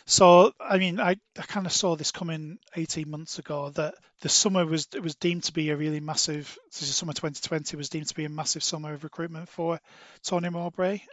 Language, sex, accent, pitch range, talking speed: English, male, British, 150-170 Hz, 230 wpm